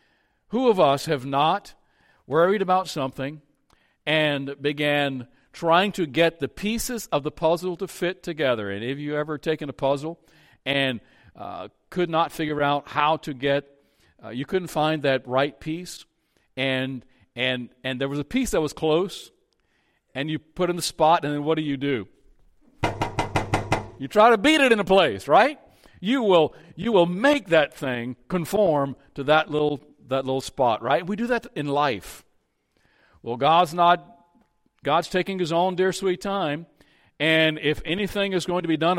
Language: English